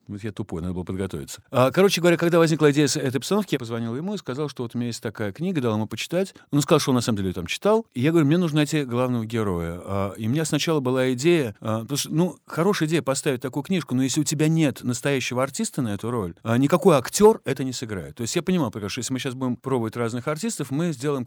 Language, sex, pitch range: Russian, male, 110-145 Hz